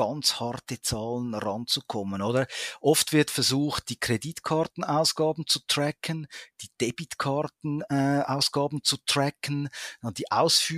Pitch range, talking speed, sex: 120-155 Hz, 90 wpm, male